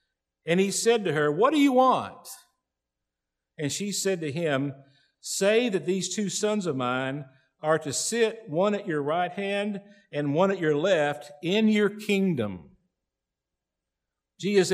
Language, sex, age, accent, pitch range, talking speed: English, male, 50-69, American, 105-170 Hz, 155 wpm